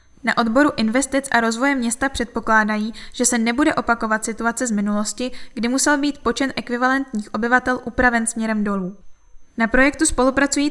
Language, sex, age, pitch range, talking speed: Czech, female, 10-29, 215-260 Hz, 145 wpm